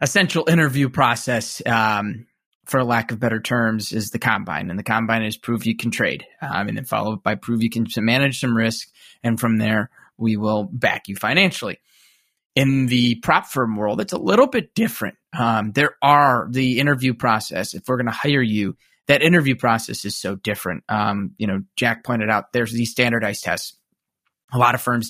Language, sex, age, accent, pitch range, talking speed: English, male, 20-39, American, 110-130 Hz, 195 wpm